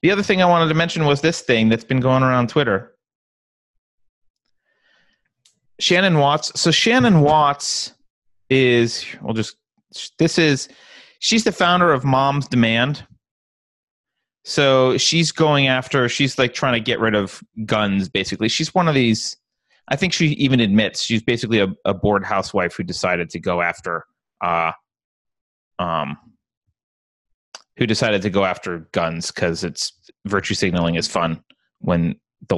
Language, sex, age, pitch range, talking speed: English, male, 30-49, 110-155 Hz, 145 wpm